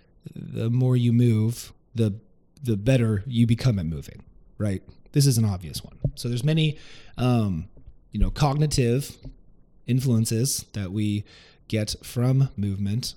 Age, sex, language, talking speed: 30-49, male, English, 135 wpm